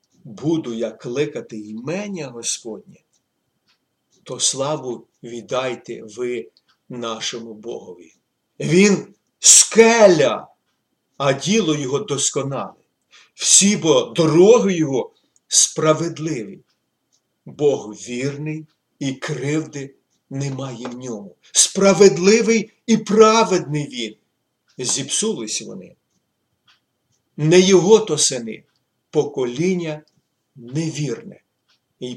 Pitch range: 135-210 Hz